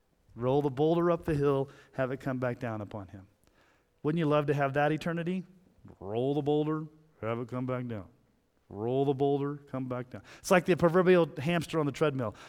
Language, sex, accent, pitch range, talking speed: English, male, American, 120-165 Hz, 200 wpm